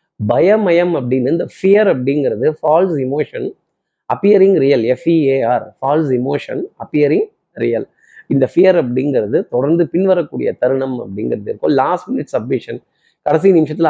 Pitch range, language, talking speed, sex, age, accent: 140-180 Hz, Tamil, 115 wpm, male, 30-49, native